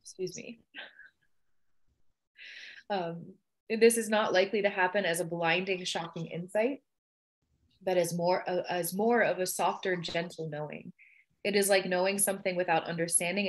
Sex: female